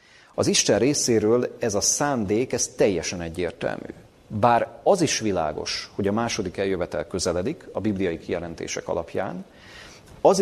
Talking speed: 125 wpm